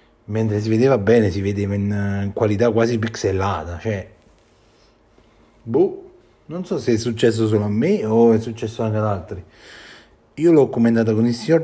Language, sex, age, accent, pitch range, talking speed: Italian, male, 30-49, native, 100-115 Hz, 165 wpm